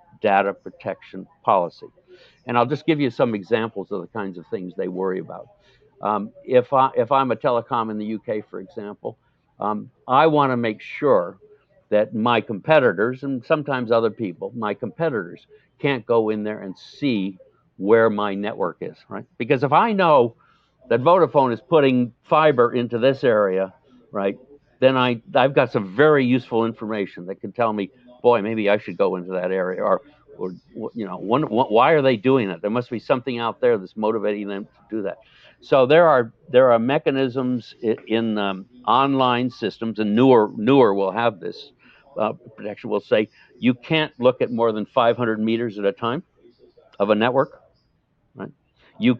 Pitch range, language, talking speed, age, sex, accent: 110-135 Hz, English, 185 wpm, 60-79, male, American